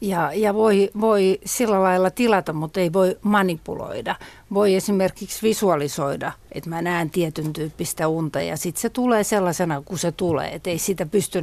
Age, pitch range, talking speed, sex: 60-79, 160-205 Hz, 170 wpm, female